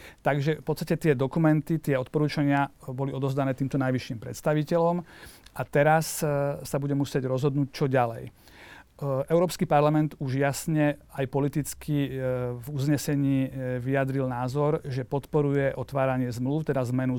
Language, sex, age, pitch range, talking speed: Slovak, male, 40-59, 130-145 Hz, 125 wpm